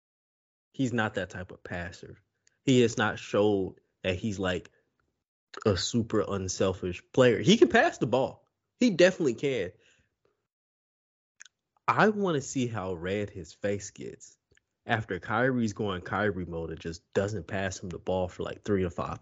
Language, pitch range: English, 105-150 Hz